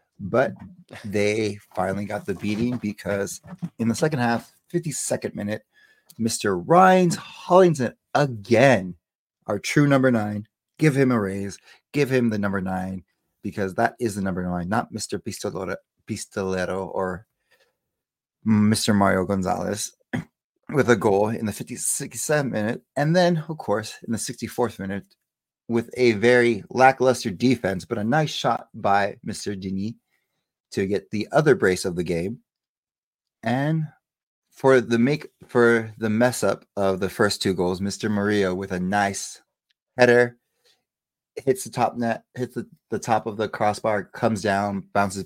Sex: male